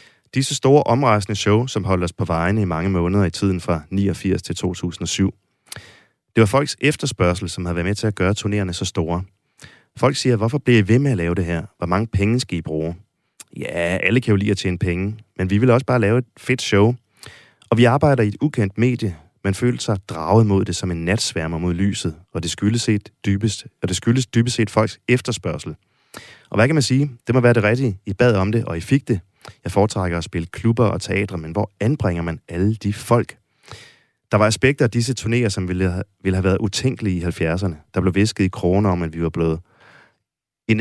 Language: Danish